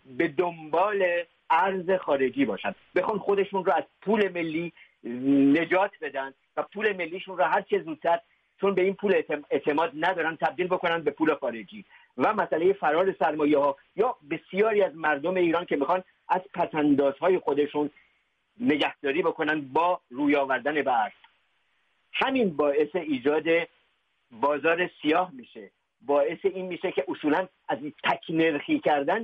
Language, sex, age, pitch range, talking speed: English, male, 50-69, 145-190 Hz, 140 wpm